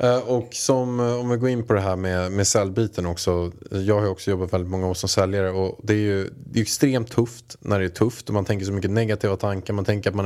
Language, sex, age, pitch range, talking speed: Swedish, male, 20-39, 100-130 Hz, 275 wpm